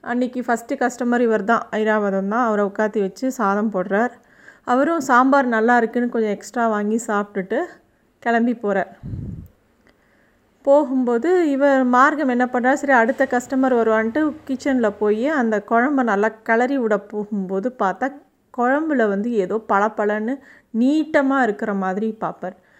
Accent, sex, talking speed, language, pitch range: native, female, 125 wpm, Tamil, 205-245 Hz